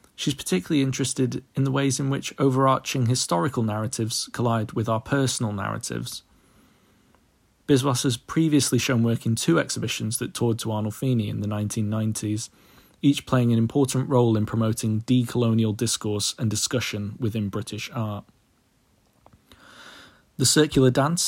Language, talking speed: English, 135 wpm